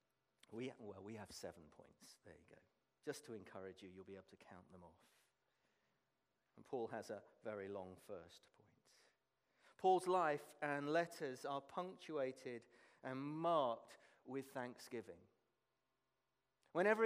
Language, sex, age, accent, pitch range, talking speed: English, male, 40-59, British, 130-175 Hz, 135 wpm